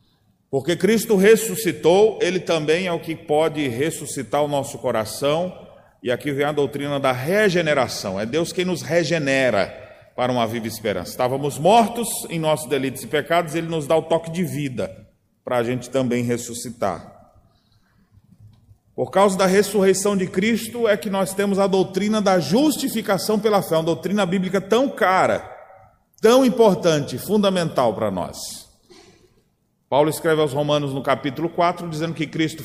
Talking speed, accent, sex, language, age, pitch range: 155 wpm, Brazilian, male, Portuguese, 40-59, 140-200 Hz